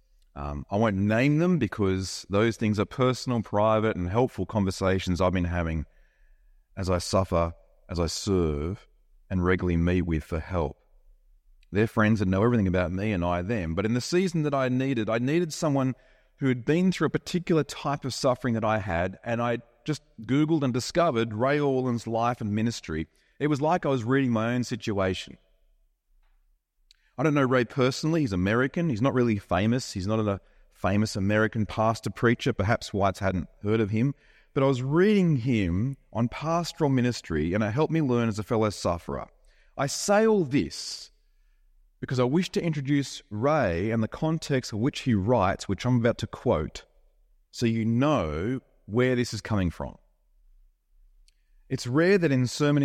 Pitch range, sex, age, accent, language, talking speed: 95-135 Hz, male, 30-49, Australian, English, 175 wpm